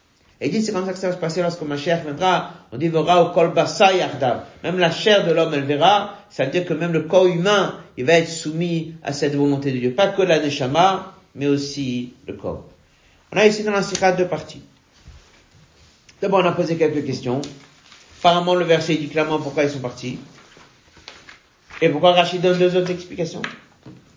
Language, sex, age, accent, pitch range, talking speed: French, male, 50-69, French, 150-190 Hz, 190 wpm